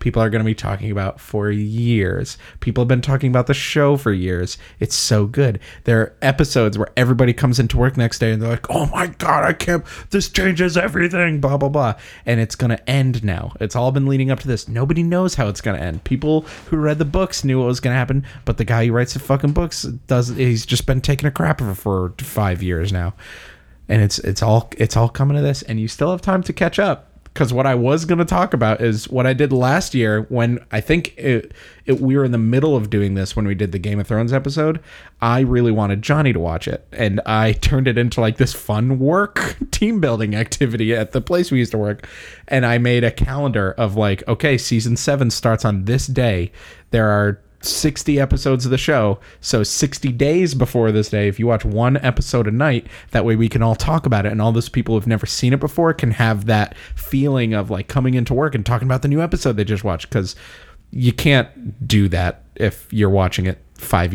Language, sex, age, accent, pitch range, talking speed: English, male, 30-49, American, 110-140 Hz, 235 wpm